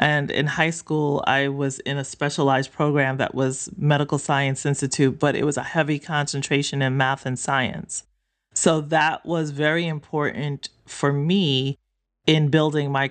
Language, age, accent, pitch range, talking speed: English, 30-49, American, 140-160 Hz, 160 wpm